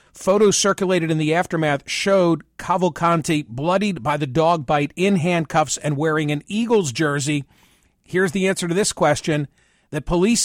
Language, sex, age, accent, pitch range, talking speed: English, male, 50-69, American, 155-190 Hz, 155 wpm